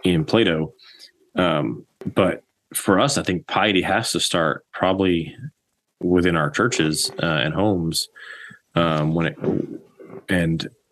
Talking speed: 125 wpm